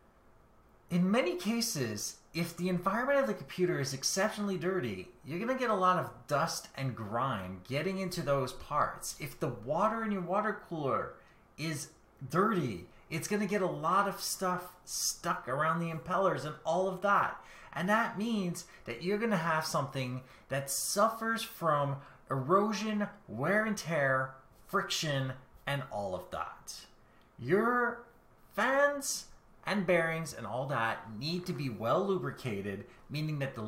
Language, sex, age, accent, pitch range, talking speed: English, male, 30-49, American, 130-195 Hz, 150 wpm